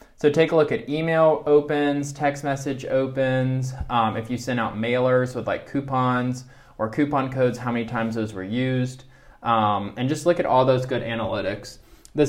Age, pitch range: 20-39, 115-145 Hz